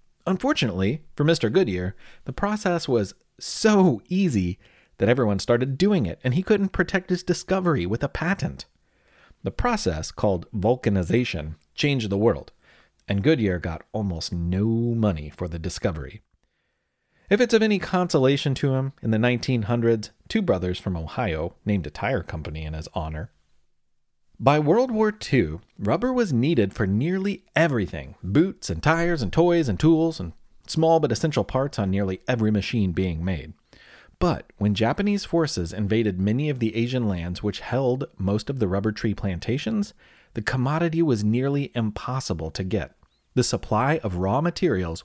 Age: 30-49